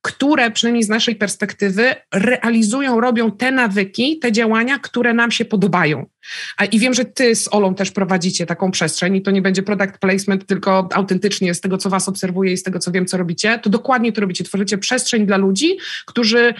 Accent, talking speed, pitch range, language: native, 195 wpm, 195-240 Hz, Polish